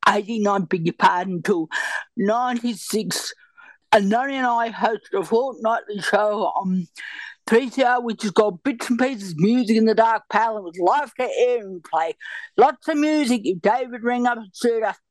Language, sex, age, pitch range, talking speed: English, female, 50-69, 210-285 Hz, 180 wpm